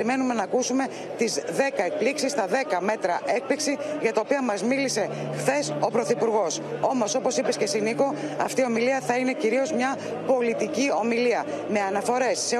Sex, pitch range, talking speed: female, 185-250 Hz, 165 wpm